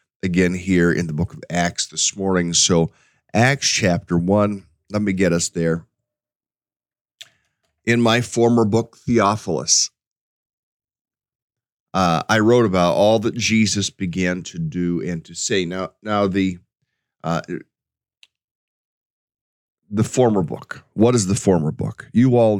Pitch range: 85-105 Hz